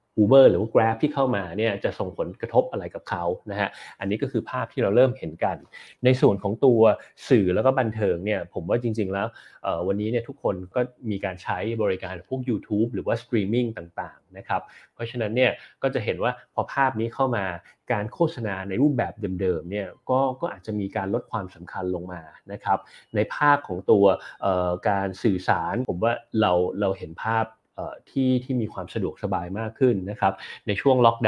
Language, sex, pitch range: Thai, male, 100-120 Hz